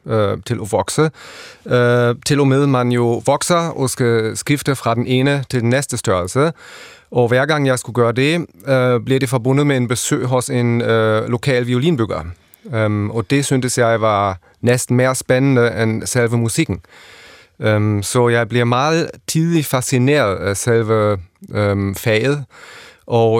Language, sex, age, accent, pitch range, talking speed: Danish, male, 30-49, German, 110-135 Hz, 145 wpm